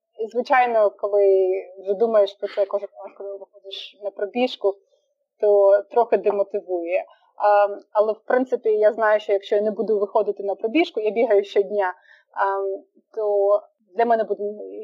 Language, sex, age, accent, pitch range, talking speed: Ukrainian, female, 30-49, native, 195-245 Hz, 145 wpm